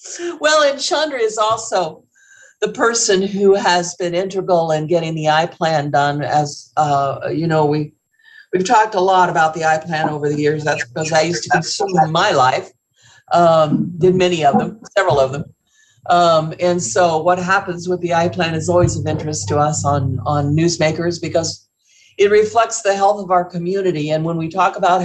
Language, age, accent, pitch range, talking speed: English, 50-69, American, 160-200 Hz, 185 wpm